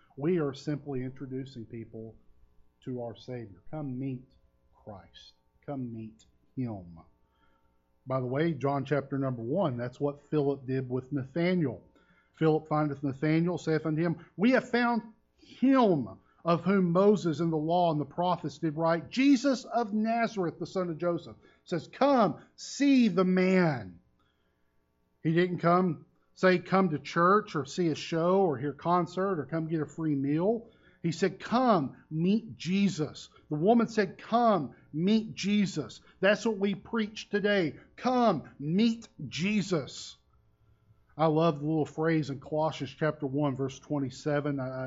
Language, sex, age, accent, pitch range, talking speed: English, male, 40-59, American, 130-180 Hz, 145 wpm